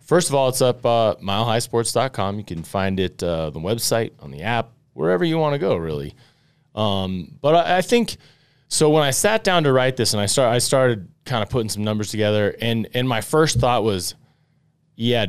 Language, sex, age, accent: English, male, 20-39, American